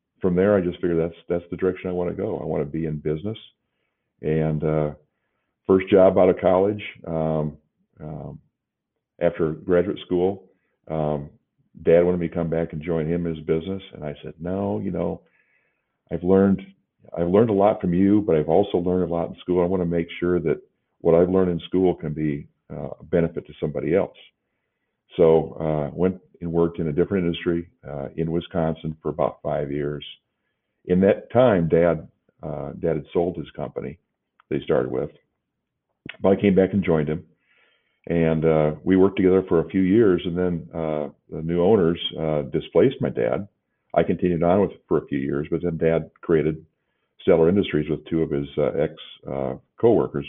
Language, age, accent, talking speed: English, 50-69, American, 190 wpm